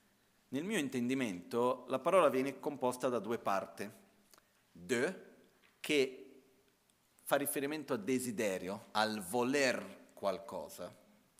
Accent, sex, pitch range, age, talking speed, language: native, male, 110-150 Hz, 40-59, 100 wpm, Italian